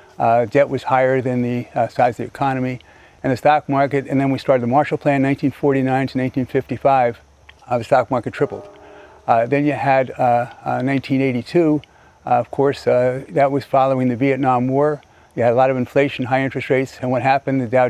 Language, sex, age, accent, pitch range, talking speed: English, male, 50-69, American, 130-150 Hz, 205 wpm